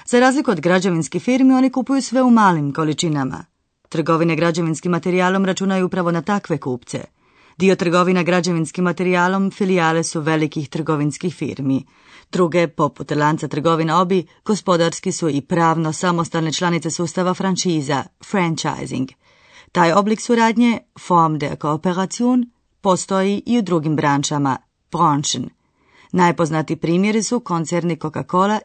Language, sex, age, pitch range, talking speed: Croatian, female, 30-49, 155-190 Hz, 130 wpm